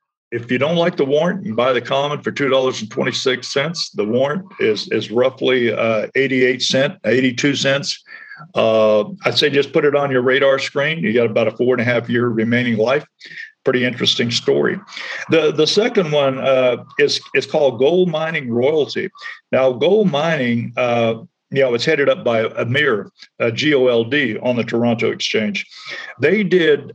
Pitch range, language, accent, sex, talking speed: 120-170 Hz, English, American, male, 170 wpm